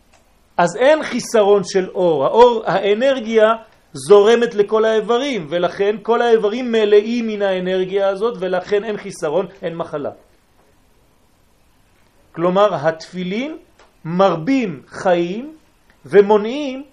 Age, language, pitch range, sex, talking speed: 40-59, French, 180-240 Hz, male, 95 wpm